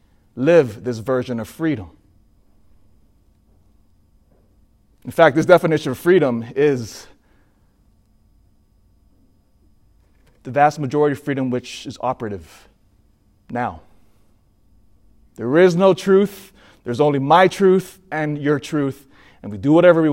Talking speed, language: 110 wpm, English